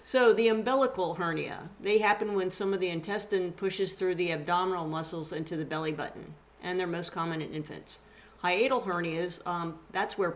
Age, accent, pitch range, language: 50-69, American, 175-205 Hz, English